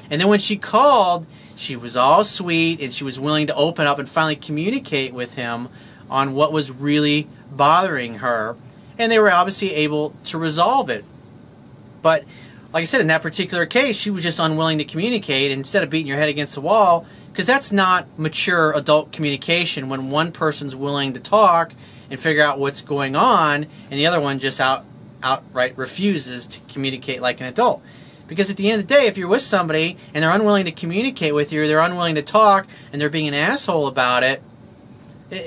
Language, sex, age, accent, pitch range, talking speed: English, male, 30-49, American, 140-185 Hz, 200 wpm